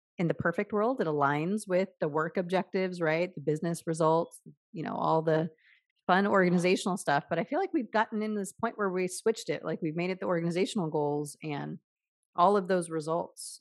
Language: English